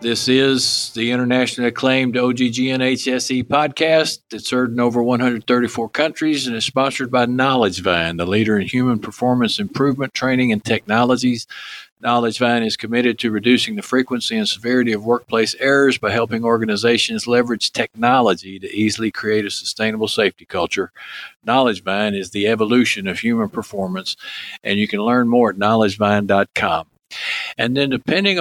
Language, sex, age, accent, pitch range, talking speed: English, male, 60-79, American, 115-130 Hz, 145 wpm